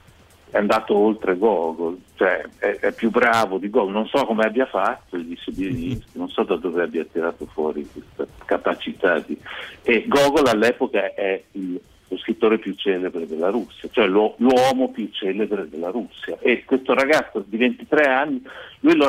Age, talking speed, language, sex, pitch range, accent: 50-69, 170 wpm, Italian, male, 95-150 Hz, native